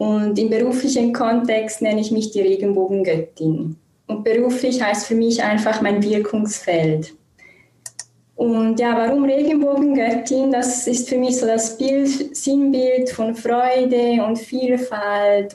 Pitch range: 210-255 Hz